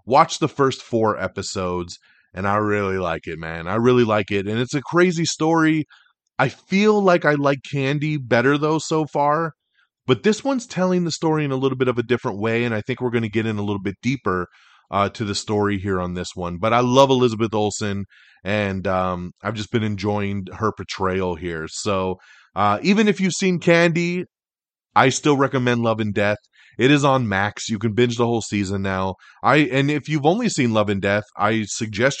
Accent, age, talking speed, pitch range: American, 30-49, 210 wpm, 100-145 Hz